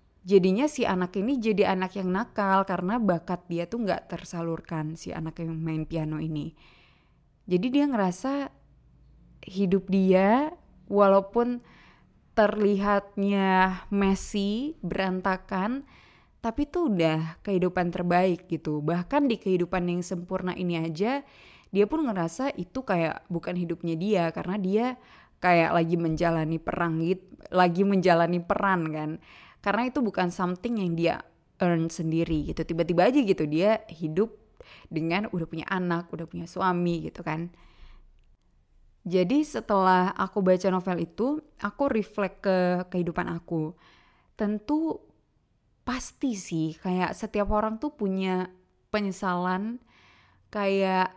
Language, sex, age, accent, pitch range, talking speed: Indonesian, female, 20-39, native, 170-210 Hz, 125 wpm